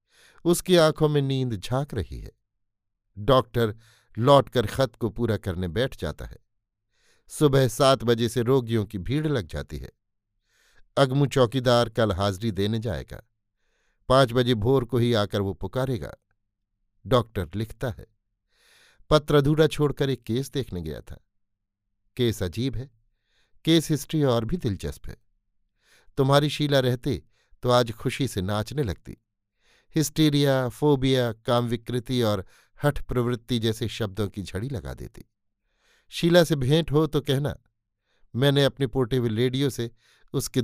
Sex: male